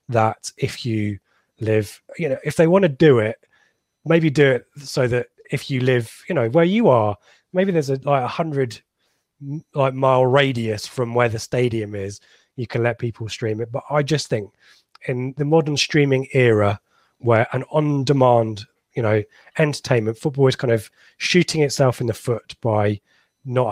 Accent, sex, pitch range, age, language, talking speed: British, male, 115-150 Hz, 20-39, English, 180 wpm